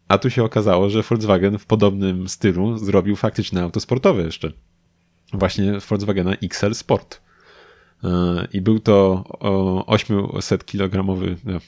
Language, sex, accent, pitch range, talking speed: Polish, male, native, 90-110 Hz, 110 wpm